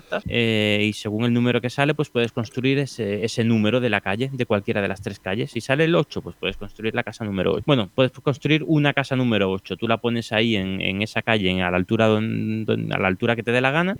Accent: Spanish